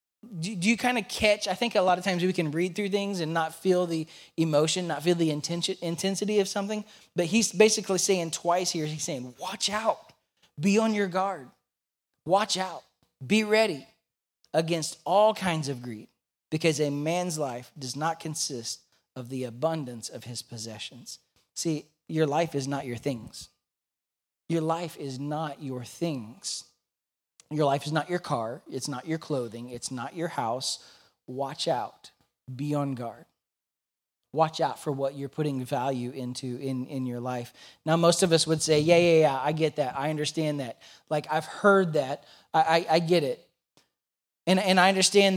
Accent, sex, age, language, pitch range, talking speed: American, male, 20-39, English, 140-185 Hz, 180 wpm